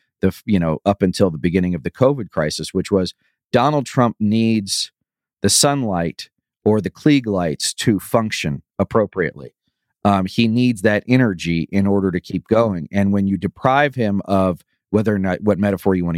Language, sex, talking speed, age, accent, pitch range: English, male, 180 wpm, 40-59, American, 90-110 Hz